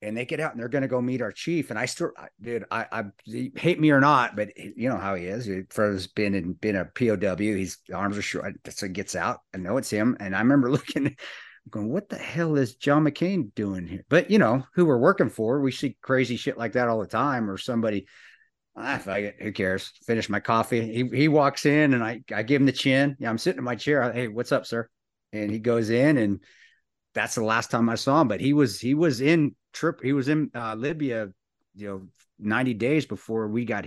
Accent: American